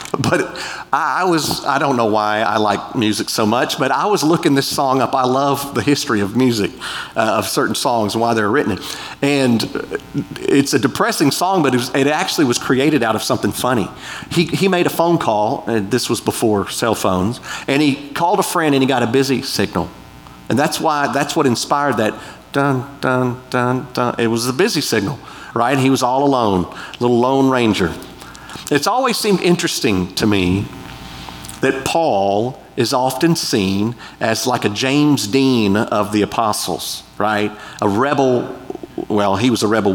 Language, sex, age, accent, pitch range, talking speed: English, male, 40-59, American, 105-155 Hz, 185 wpm